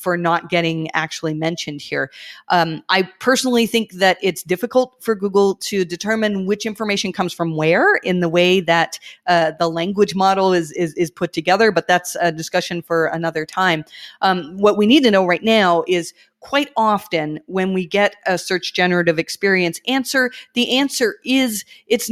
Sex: female